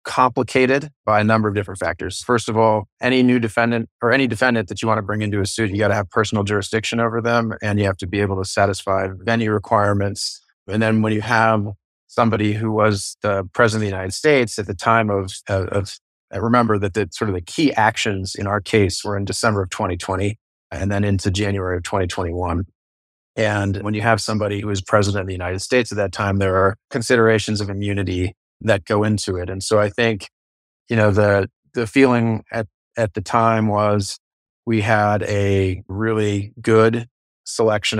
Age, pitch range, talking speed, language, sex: 30-49, 95-110 Hz, 200 wpm, English, male